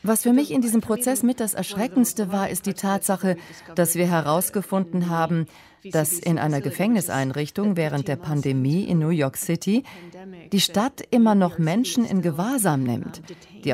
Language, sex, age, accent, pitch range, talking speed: German, female, 40-59, German, 145-195 Hz, 160 wpm